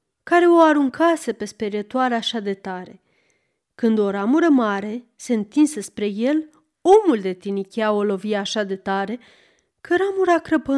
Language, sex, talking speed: Romanian, female, 150 wpm